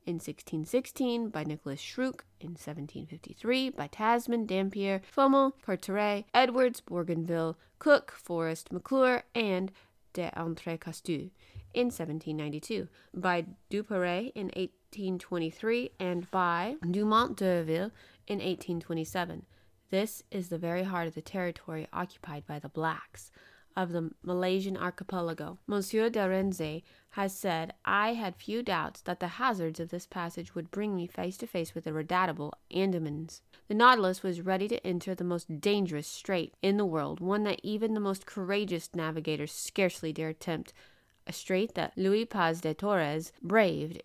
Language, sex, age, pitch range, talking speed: English, female, 20-39, 165-205 Hz, 155 wpm